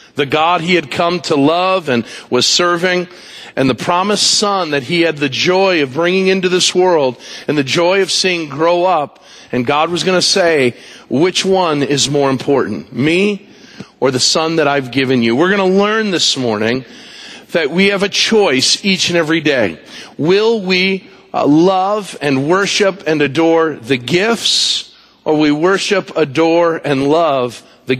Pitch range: 145-185 Hz